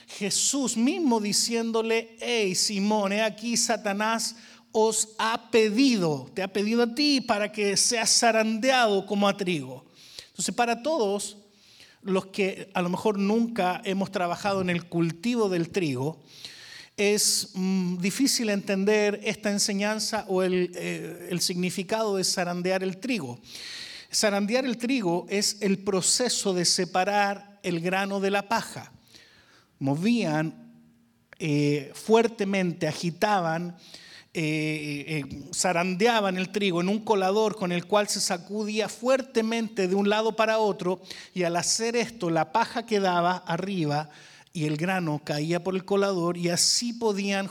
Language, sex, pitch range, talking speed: Spanish, male, 180-225 Hz, 135 wpm